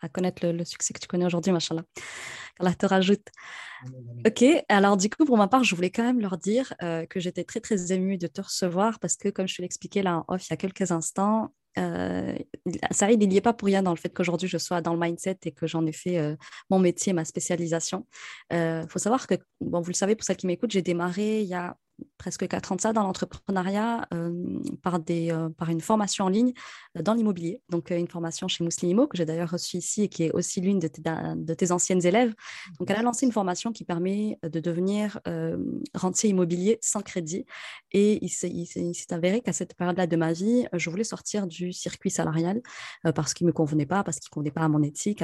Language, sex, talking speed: French, female, 240 wpm